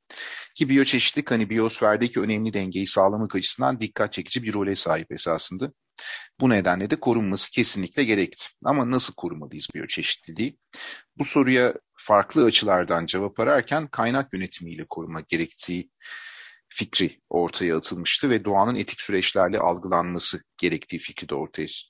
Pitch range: 95-120 Hz